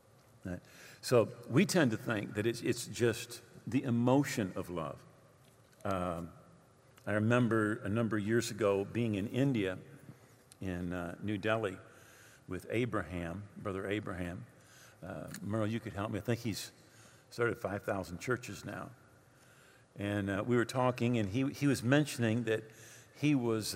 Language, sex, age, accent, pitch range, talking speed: English, male, 50-69, American, 105-130 Hz, 145 wpm